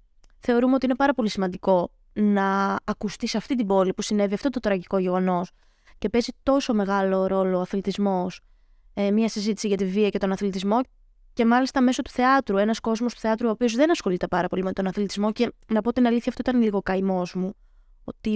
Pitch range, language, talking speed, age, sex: 200-245 Hz, Greek, 205 wpm, 20-39, female